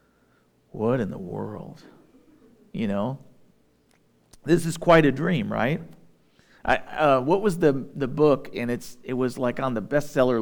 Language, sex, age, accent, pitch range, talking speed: English, male, 40-59, American, 115-160 Hz, 155 wpm